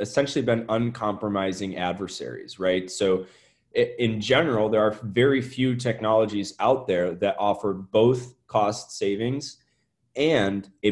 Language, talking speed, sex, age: English, 120 wpm, male, 20-39